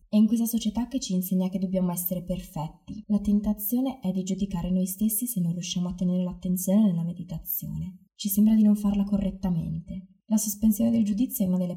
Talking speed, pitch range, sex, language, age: 200 wpm, 175-205 Hz, female, Italian, 20-39